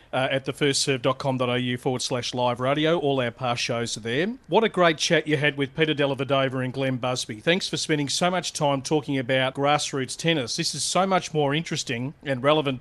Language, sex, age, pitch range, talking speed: English, male, 40-59, 135-160 Hz, 200 wpm